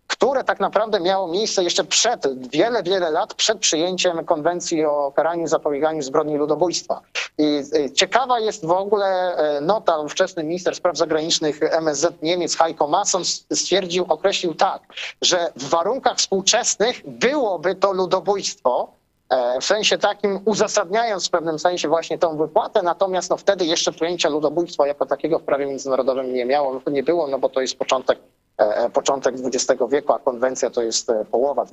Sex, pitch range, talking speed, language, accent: male, 150-190 Hz, 155 wpm, Polish, native